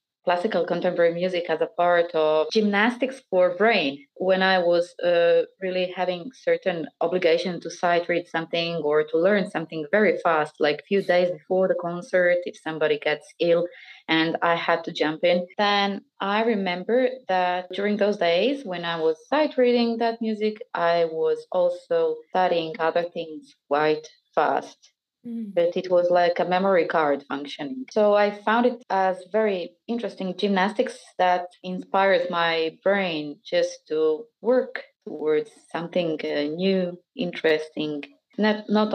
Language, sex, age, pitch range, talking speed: English, female, 20-39, 170-215 Hz, 150 wpm